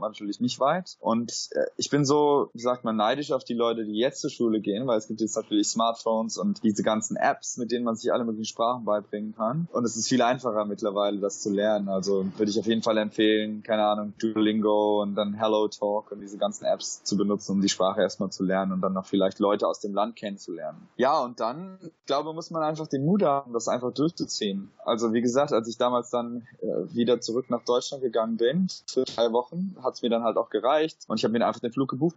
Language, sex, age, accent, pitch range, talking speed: German, male, 20-39, German, 110-140 Hz, 235 wpm